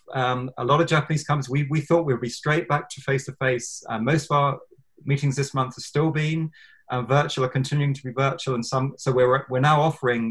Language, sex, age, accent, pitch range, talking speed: English, male, 30-49, British, 120-140 Hz, 225 wpm